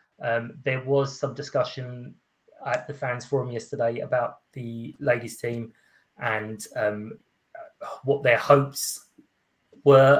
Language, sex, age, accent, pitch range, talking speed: English, male, 30-49, British, 115-140 Hz, 120 wpm